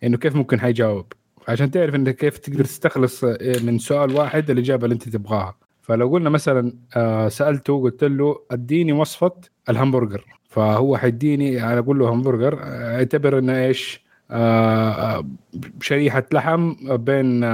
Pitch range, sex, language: 120-150 Hz, male, Arabic